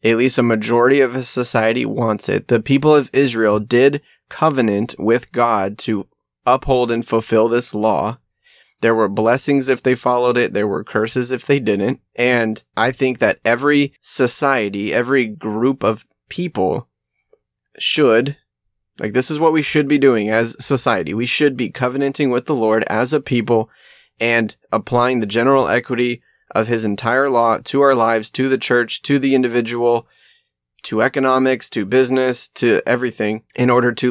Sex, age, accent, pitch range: male, 30-49, American, 110-135 Hz